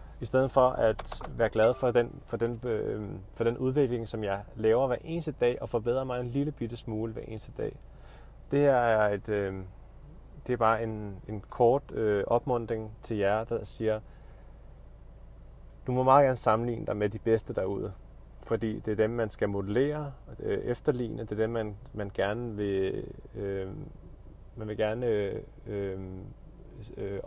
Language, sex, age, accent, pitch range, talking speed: Danish, male, 30-49, native, 105-120 Hz, 175 wpm